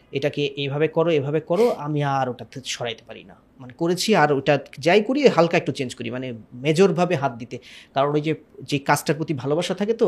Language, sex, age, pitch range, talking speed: Bengali, male, 30-49, 130-160 Hz, 195 wpm